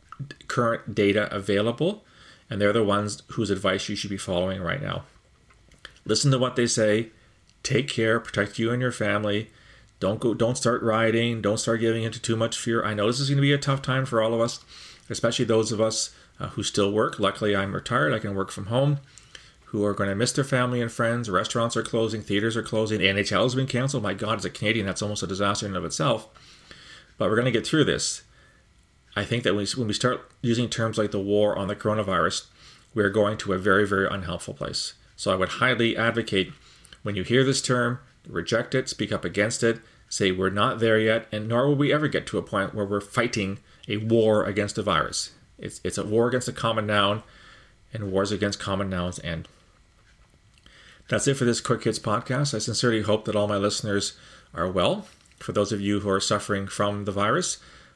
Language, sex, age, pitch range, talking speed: English, male, 30-49, 100-115 Hz, 215 wpm